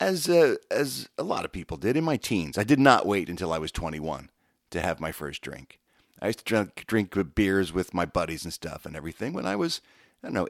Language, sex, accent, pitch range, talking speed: English, male, American, 90-130 Hz, 250 wpm